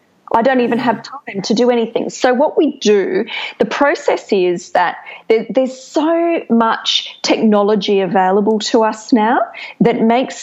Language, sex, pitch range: English, female, 195-255 Hz